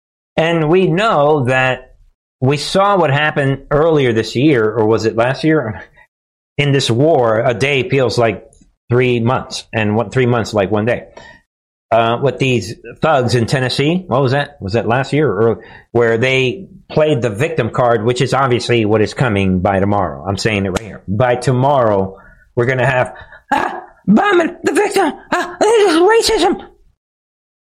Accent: American